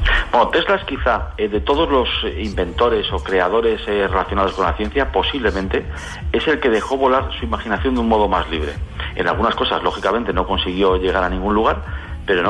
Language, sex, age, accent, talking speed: English, male, 40-59, Spanish, 195 wpm